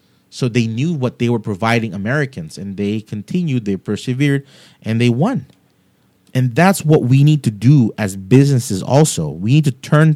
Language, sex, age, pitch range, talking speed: English, male, 30-49, 105-135 Hz, 175 wpm